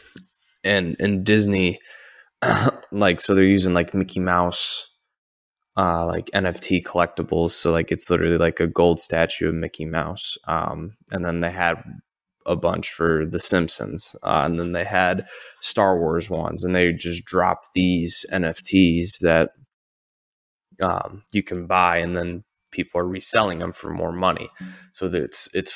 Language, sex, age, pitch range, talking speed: English, male, 20-39, 85-100 Hz, 155 wpm